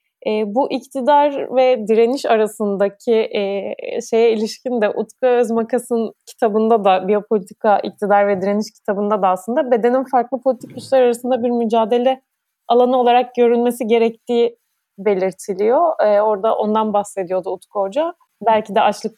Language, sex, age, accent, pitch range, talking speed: Turkish, female, 30-49, native, 205-260 Hz, 130 wpm